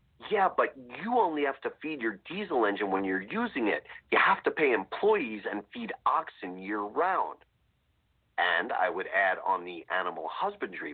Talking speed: 170 wpm